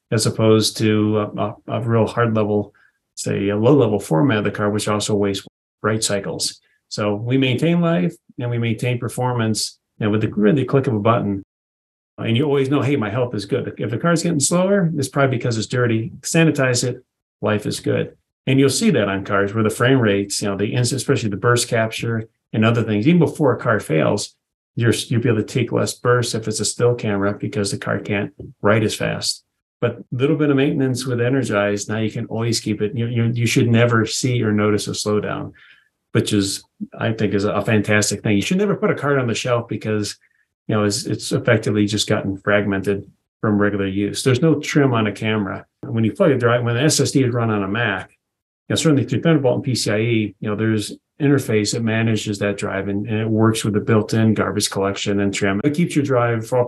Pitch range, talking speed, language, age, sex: 105-130 Hz, 230 wpm, English, 40-59, male